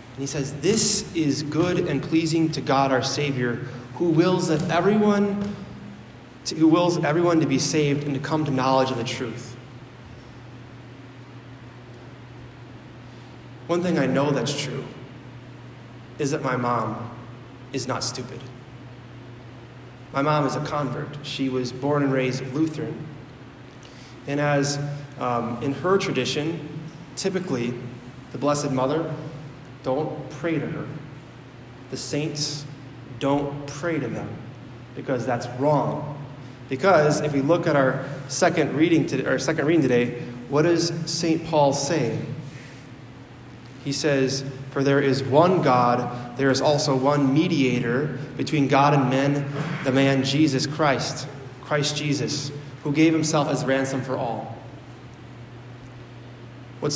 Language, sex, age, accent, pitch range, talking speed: English, male, 20-39, American, 125-150 Hz, 125 wpm